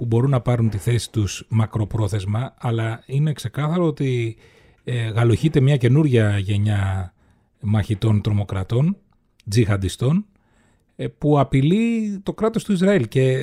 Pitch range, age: 110-150 Hz, 30-49